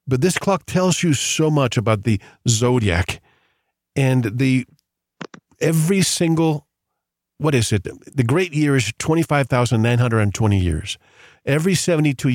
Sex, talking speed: male, 145 wpm